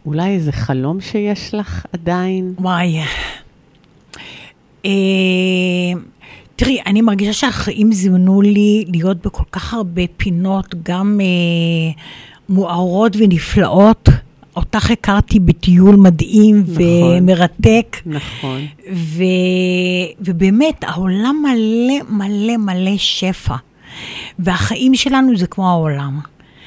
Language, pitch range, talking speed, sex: Hebrew, 180-220 Hz, 85 wpm, female